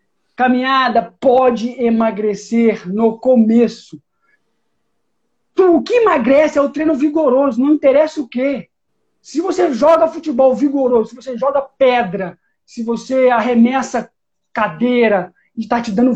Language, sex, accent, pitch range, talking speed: Portuguese, male, Brazilian, 215-270 Hz, 125 wpm